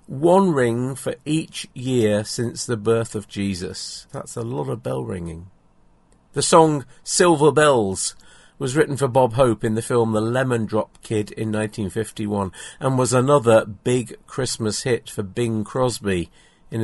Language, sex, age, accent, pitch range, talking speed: English, male, 50-69, British, 105-140 Hz, 155 wpm